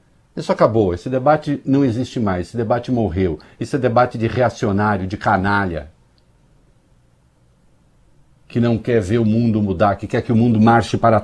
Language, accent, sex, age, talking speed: Portuguese, Brazilian, male, 60-79, 160 wpm